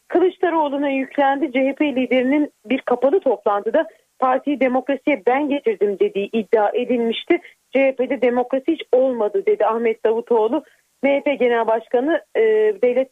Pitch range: 230-290 Hz